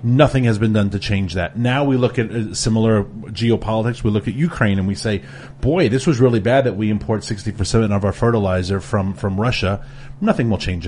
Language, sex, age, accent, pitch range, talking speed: English, male, 30-49, American, 110-160 Hz, 210 wpm